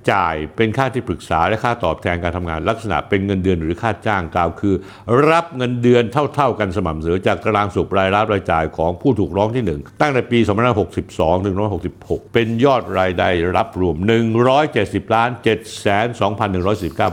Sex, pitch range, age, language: male, 95-125 Hz, 60-79, Thai